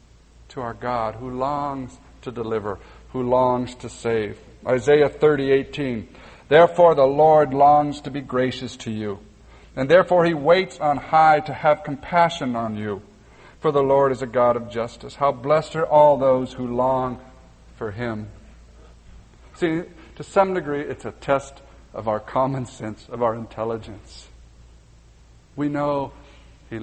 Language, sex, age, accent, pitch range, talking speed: English, male, 50-69, American, 105-130 Hz, 150 wpm